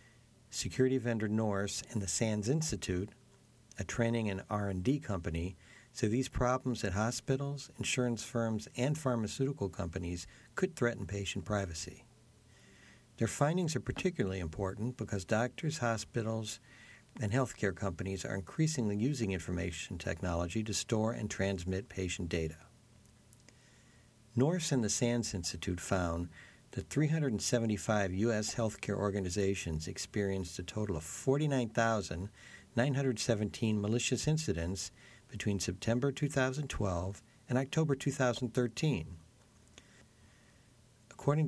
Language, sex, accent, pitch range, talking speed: English, male, American, 100-125 Hz, 105 wpm